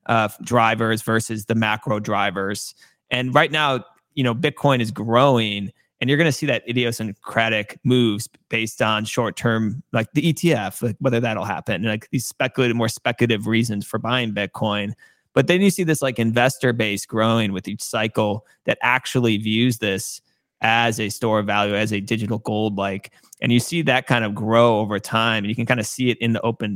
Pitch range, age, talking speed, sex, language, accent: 110-125 Hz, 30-49, 190 wpm, male, English, American